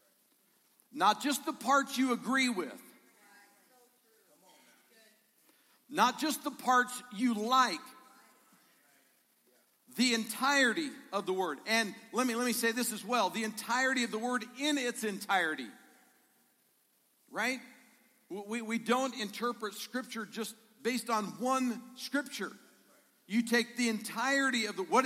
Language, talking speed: English, 125 wpm